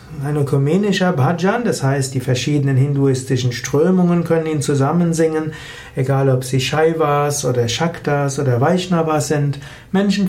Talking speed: 130 wpm